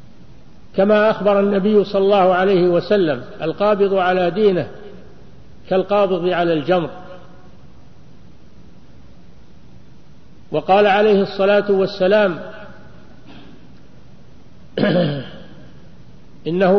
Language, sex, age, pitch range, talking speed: Arabic, male, 60-79, 180-210 Hz, 65 wpm